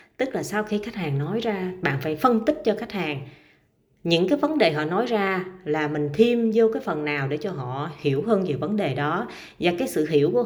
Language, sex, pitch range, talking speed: Vietnamese, female, 150-225 Hz, 245 wpm